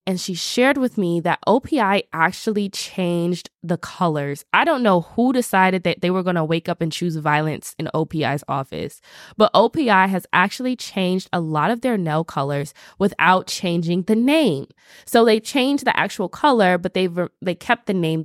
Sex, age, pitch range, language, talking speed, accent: female, 20-39, 170-220 Hz, English, 185 wpm, American